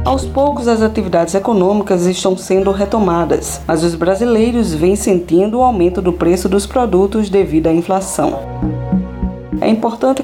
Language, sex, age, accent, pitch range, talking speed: Portuguese, female, 20-39, Brazilian, 175-230 Hz, 140 wpm